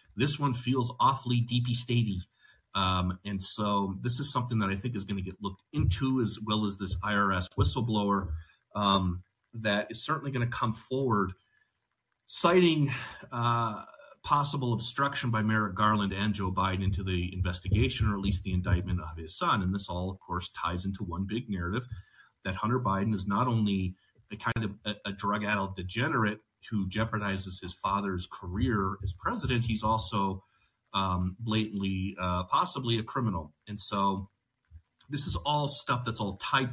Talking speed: 170 wpm